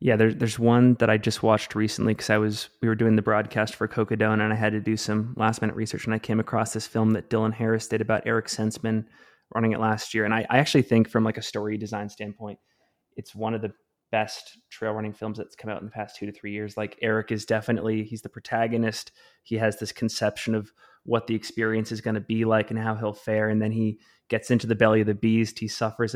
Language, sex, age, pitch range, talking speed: English, male, 20-39, 110-115 Hz, 250 wpm